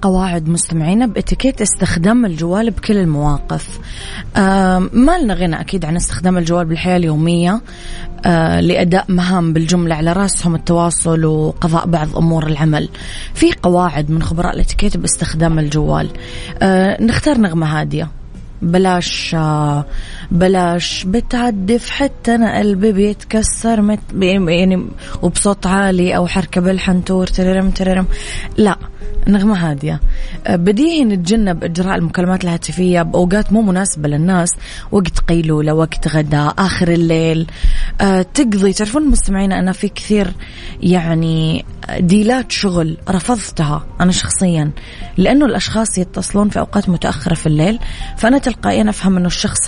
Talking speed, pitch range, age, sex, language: 120 wpm, 165-210 Hz, 20-39, female, Arabic